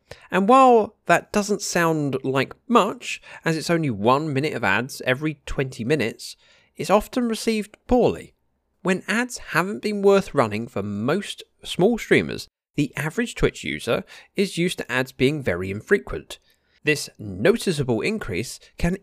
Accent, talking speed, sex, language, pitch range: British, 145 wpm, male, English, 130-205 Hz